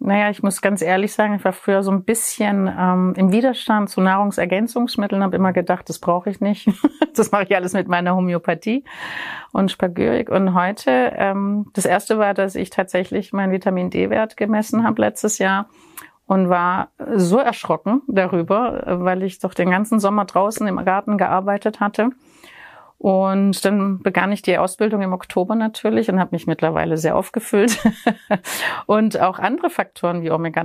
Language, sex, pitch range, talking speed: German, female, 180-210 Hz, 170 wpm